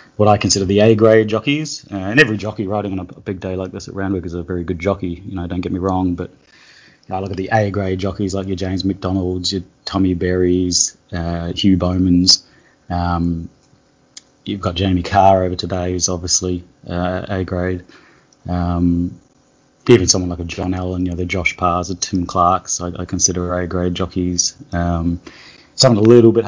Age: 20-39